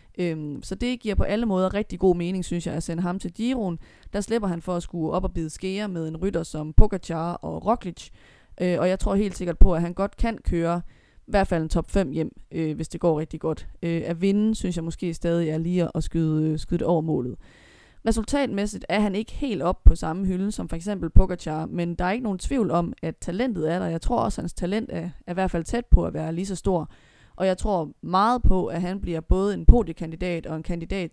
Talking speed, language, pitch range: 240 wpm, Danish, 165-205 Hz